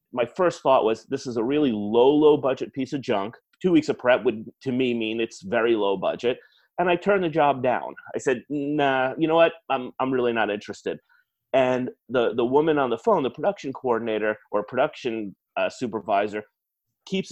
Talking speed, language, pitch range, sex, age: 200 wpm, English, 115-155 Hz, male, 30-49